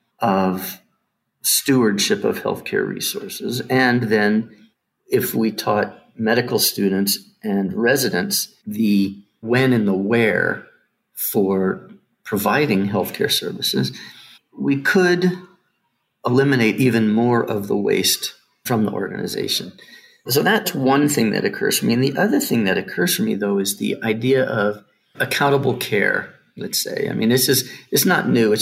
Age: 50-69